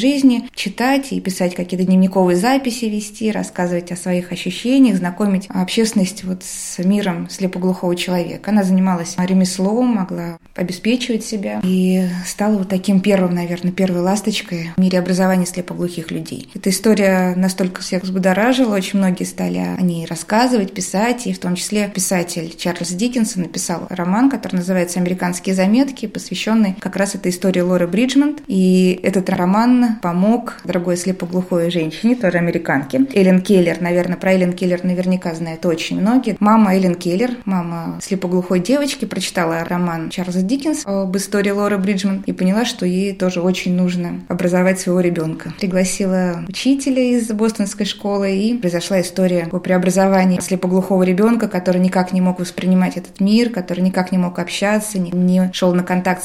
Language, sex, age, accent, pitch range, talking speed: Russian, female, 20-39, native, 180-205 Hz, 150 wpm